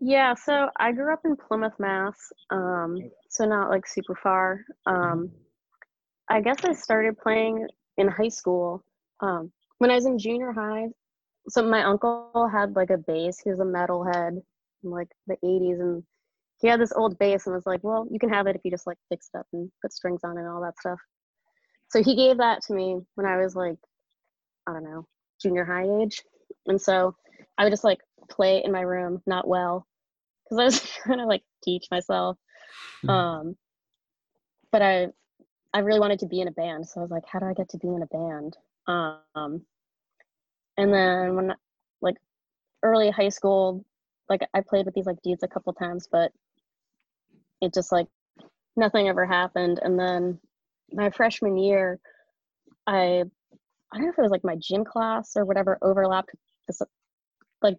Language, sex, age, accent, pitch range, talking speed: English, female, 20-39, American, 180-220 Hz, 190 wpm